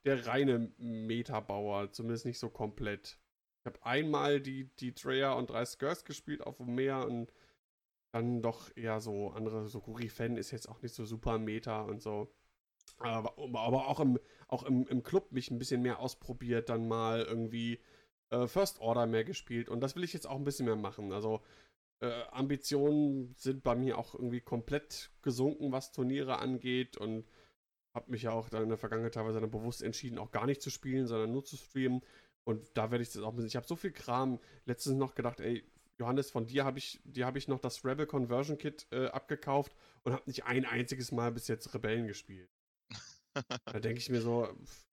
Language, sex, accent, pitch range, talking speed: German, male, German, 115-135 Hz, 200 wpm